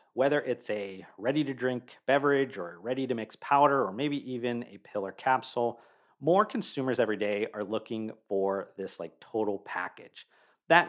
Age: 40-59